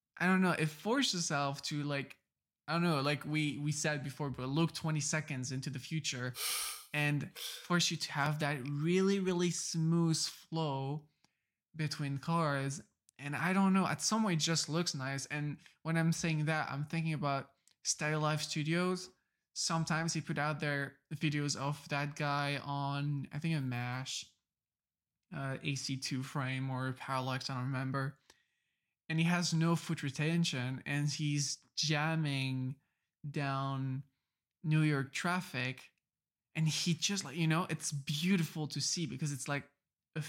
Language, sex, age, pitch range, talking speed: English, male, 20-39, 140-165 Hz, 160 wpm